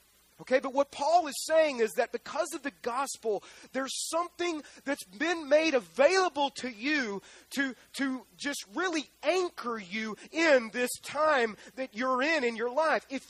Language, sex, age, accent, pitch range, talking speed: English, male, 30-49, American, 230-295 Hz, 160 wpm